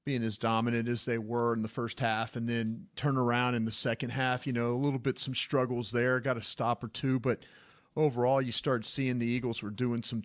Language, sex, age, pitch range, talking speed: English, male, 40-59, 115-135 Hz, 240 wpm